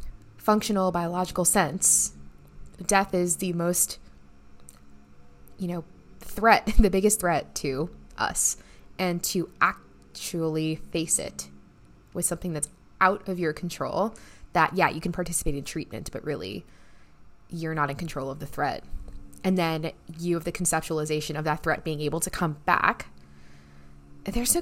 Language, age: English, 20-39